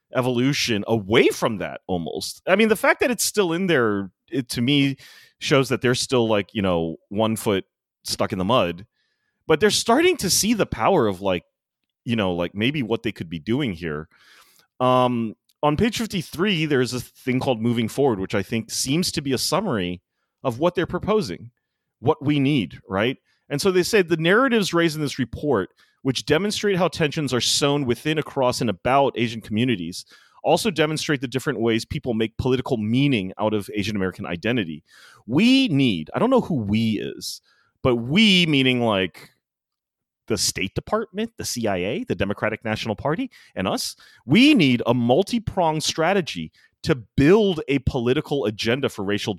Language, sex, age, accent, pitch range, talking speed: English, male, 30-49, American, 115-170 Hz, 175 wpm